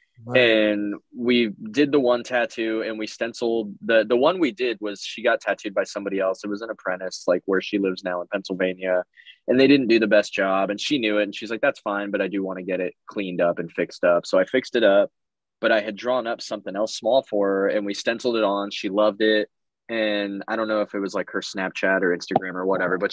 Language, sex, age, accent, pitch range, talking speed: English, male, 20-39, American, 95-115 Hz, 255 wpm